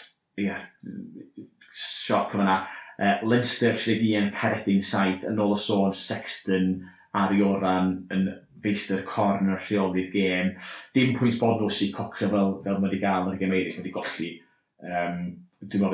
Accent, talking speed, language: British, 120 wpm, English